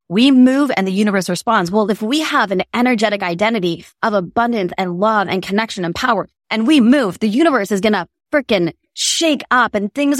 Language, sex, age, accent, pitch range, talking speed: English, female, 20-39, American, 185-235 Hz, 200 wpm